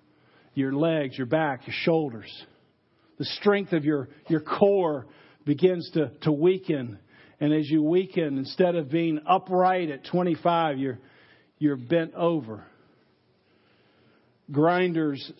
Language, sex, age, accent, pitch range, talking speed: English, male, 50-69, American, 150-185 Hz, 115 wpm